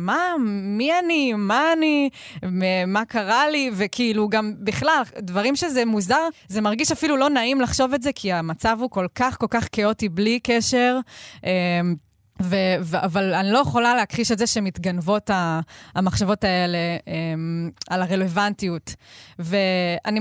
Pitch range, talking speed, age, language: 185-235 Hz, 135 wpm, 20-39, Hebrew